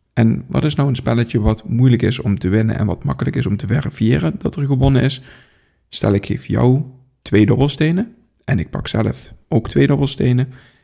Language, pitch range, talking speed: Dutch, 115-145 Hz, 200 wpm